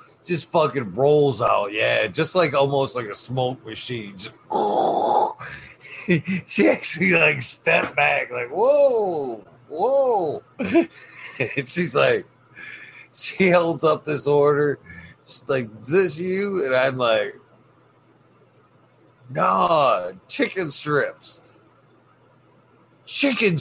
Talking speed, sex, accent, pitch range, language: 105 wpm, male, American, 125-175 Hz, English